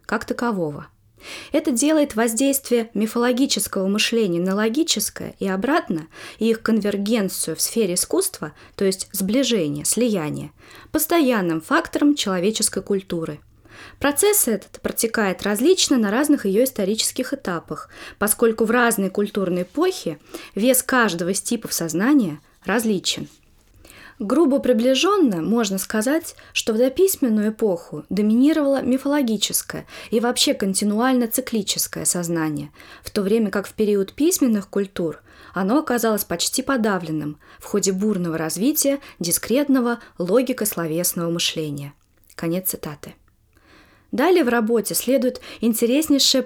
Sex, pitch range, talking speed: female, 190-260 Hz, 110 wpm